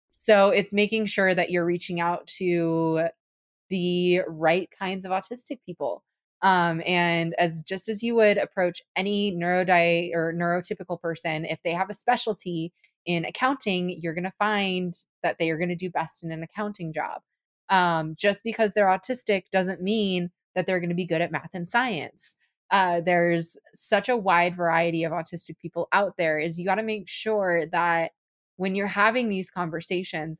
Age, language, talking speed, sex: 20-39, English, 180 wpm, female